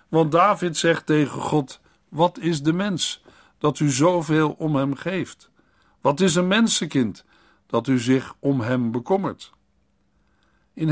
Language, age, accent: Dutch, 60-79, Dutch